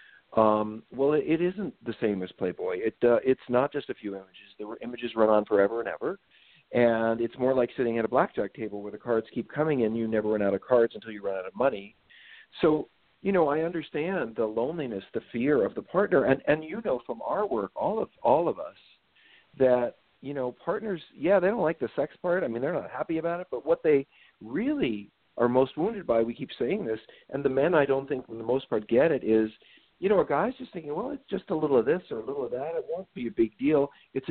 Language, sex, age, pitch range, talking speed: English, male, 50-69, 115-155 Hz, 245 wpm